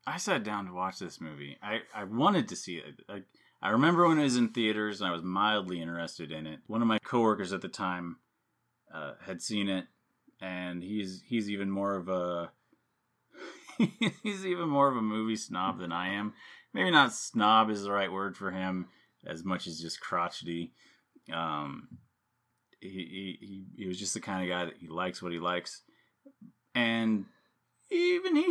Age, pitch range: 30-49, 90-120 Hz